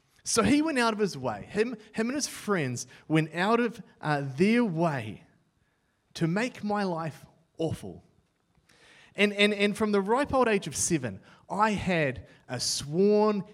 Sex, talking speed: male, 165 wpm